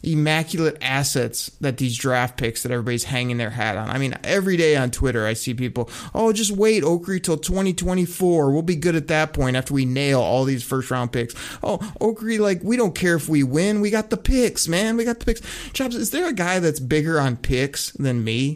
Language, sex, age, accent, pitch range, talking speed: English, male, 30-49, American, 130-170 Hz, 225 wpm